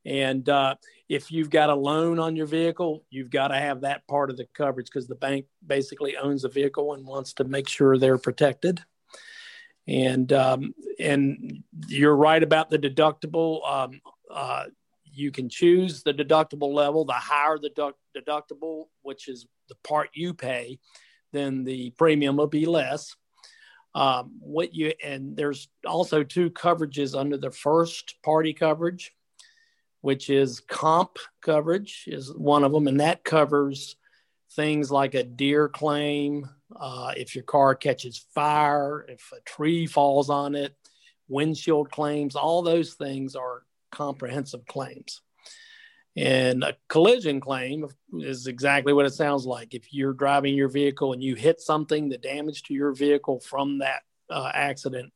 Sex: male